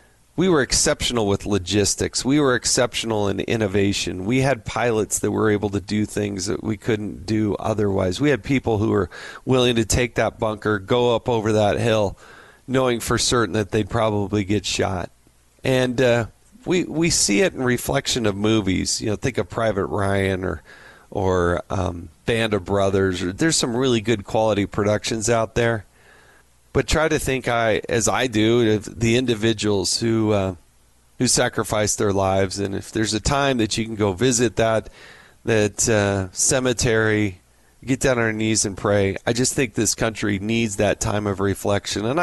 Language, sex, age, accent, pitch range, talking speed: English, male, 40-59, American, 100-120 Hz, 180 wpm